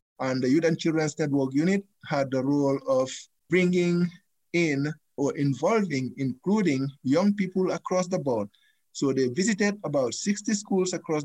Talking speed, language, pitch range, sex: 150 wpm, English, 135-180 Hz, male